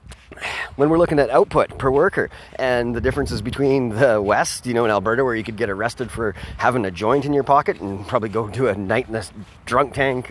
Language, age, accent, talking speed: English, 30-49, American, 225 wpm